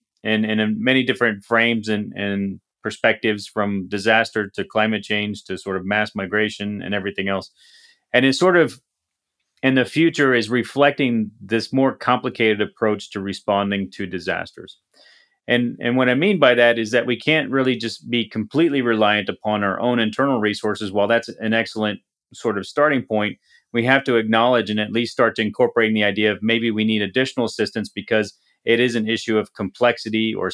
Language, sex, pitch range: English, male, 105-125 Hz